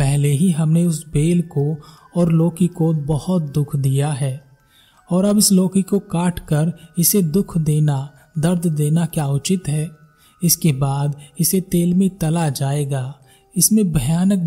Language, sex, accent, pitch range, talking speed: Hindi, male, native, 145-175 Hz, 145 wpm